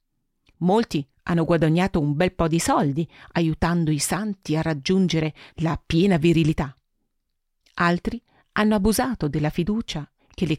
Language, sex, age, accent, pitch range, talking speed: Italian, female, 40-59, native, 155-210 Hz, 130 wpm